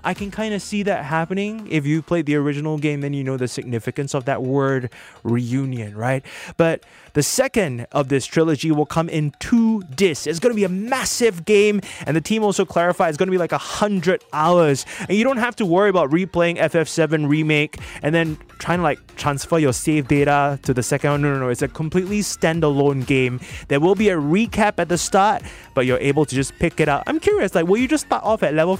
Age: 20-39